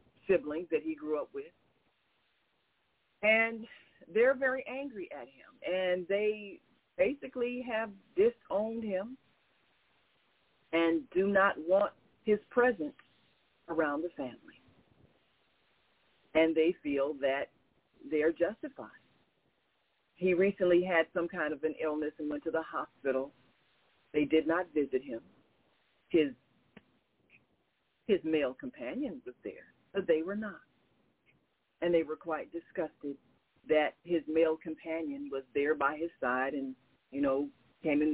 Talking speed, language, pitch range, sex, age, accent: 125 wpm, English, 150-210 Hz, female, 40-59, American